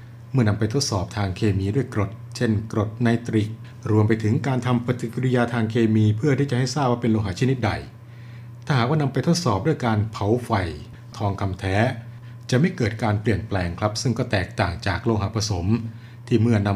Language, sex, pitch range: Thai, male, 105-125 Hz